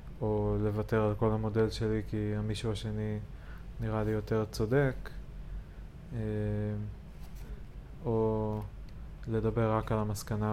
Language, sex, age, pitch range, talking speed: Hebrew, male, 20-39, 110-125 Hz, 110 wpm